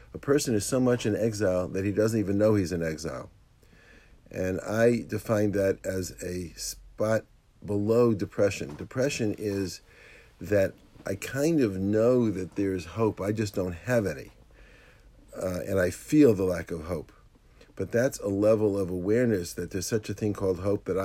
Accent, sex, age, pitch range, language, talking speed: American, male, 50-69, 95-110 Hz, English, 175 wpm